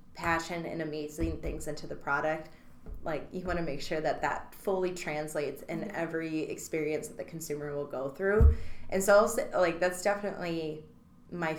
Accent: American